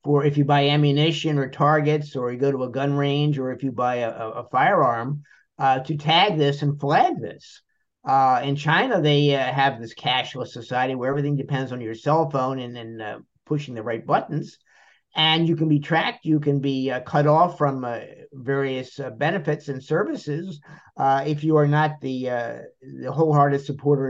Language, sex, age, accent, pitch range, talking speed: English, male, 50-69, American, 130-150 Hz, 200 wpm